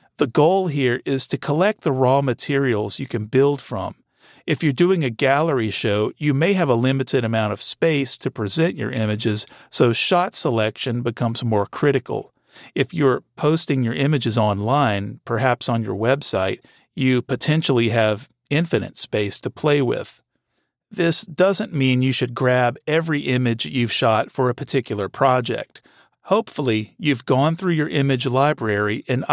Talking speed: 160 wpm